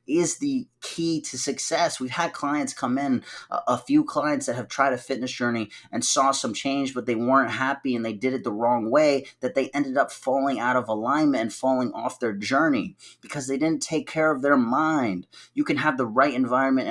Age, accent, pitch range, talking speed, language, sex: 30-49, American, 120-145 Hz, 220 wpm, English, male